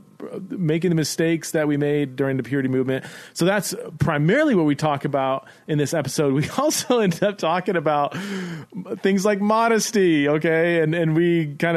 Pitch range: 135-170 Hz